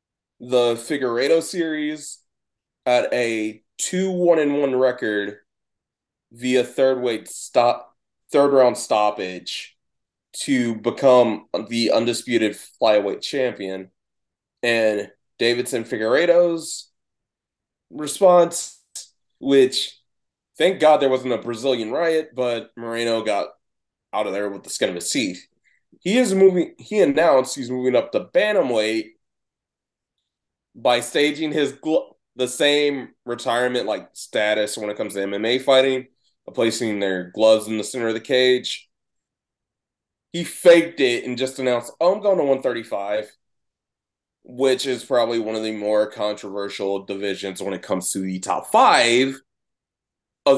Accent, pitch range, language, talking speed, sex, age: American, 105-140 Hz, English, 125 wpm, male, 20-39